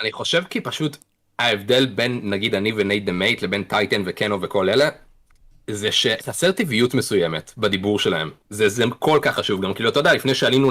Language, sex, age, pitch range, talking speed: Hebrew, male, 30-49, 105-135 Hz, 180 wpm